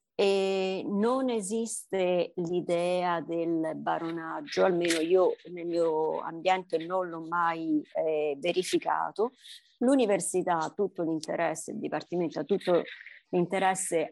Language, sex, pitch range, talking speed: Italian, female, 165-200 Hz, 100 wpm